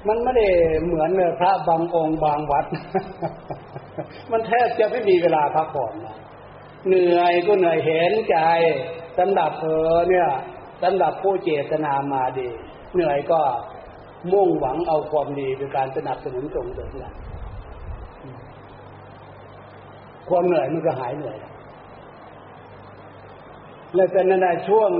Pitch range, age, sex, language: 135-175 Hz, 60-79, male, Thai